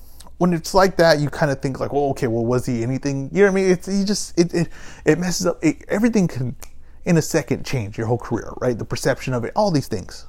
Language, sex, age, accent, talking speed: English, male, 30-49, American, 275 wpm